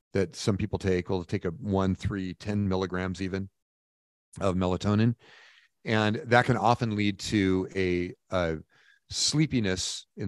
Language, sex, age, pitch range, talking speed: English, male, 40-59, 95-110 Hz, 140 wpm